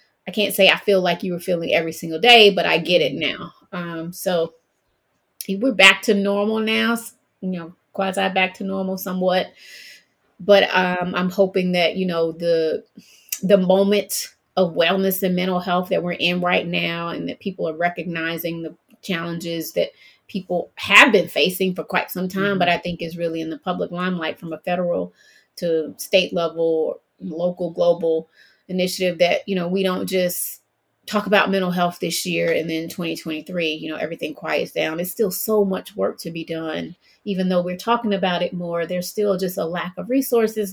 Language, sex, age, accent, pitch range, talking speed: English, female, 30-49, American, 165-195 Hz, 185 wpm